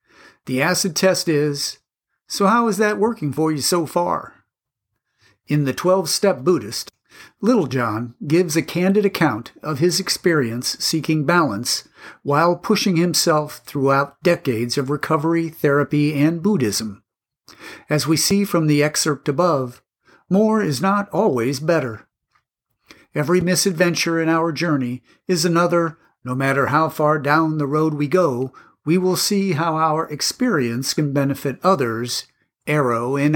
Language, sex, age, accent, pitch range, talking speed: English, male, 50-69, American, 140-180 Hz, 140 wpm